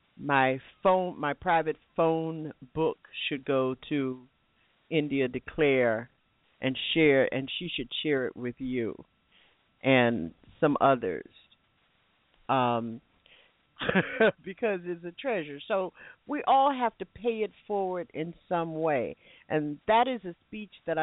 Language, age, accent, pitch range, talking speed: English, 50-69, American, 135-170 Hz, 130 wpm